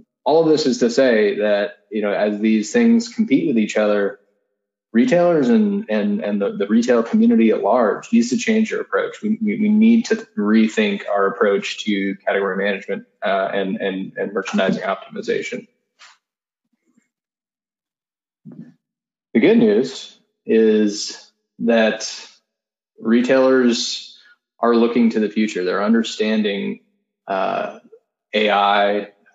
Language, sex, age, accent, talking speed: English, male, 20-39, American, 125 wpm